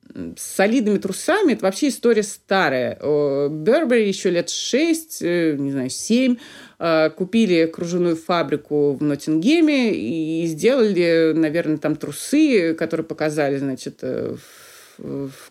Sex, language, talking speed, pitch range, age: female, Russian, 110 wpm, 150-225 Hz, 30-49